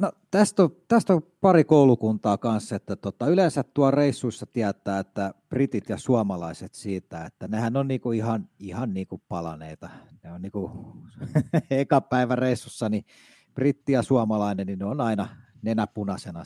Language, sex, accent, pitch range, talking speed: Finnish, male, native, 100-135 Hz, 155 wpm